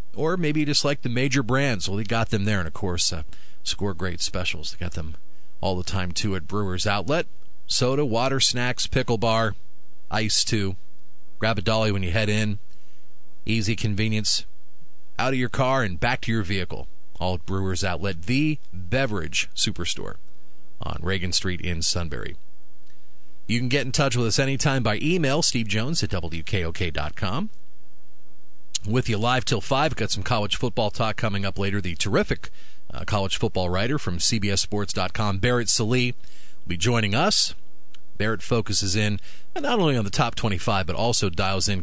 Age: 40-59